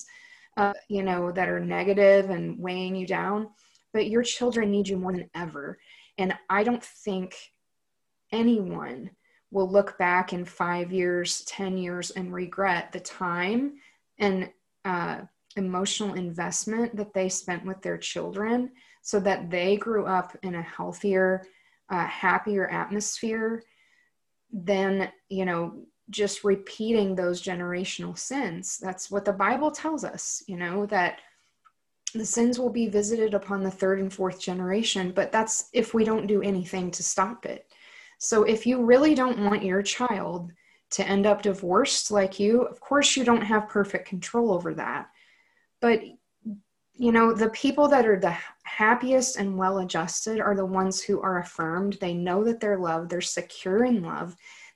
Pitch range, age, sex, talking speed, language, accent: 185-225 Hz, 20-39, female, 160 wpm, English, American